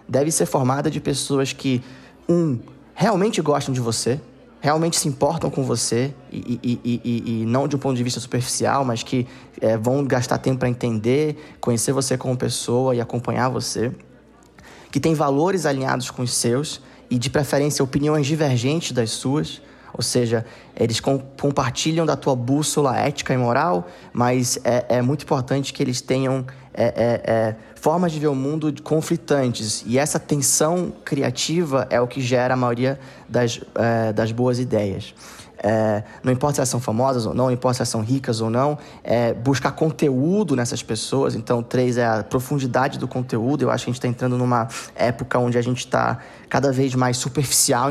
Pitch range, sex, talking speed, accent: 120-140 Hz, male, 185 wpm, Brazilian